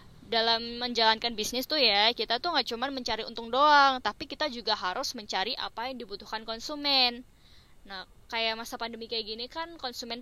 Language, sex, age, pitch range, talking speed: Indonesian, female, 10-29, 230-255 Hz, 170 wpm